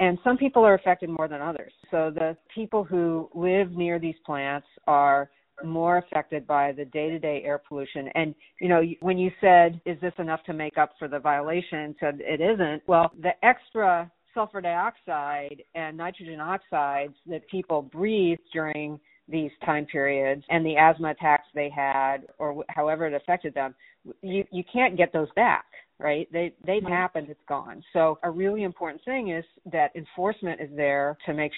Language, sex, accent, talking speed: English, female, American, 175 wpm